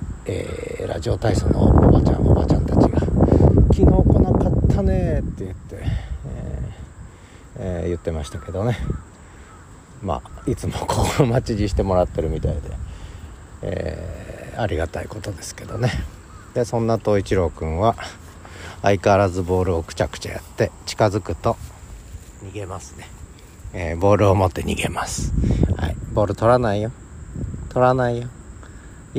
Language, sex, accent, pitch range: Japanese, male, native, 85-110 Hz